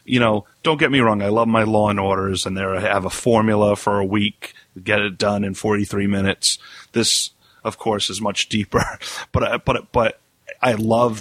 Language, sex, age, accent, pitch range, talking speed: English, male, 40-59, American, 105-120 Hz, 210 wpm